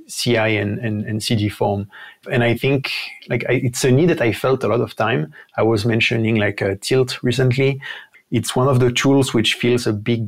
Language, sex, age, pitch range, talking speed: English, male, 30-49, 110-125 Hz, 215 wpm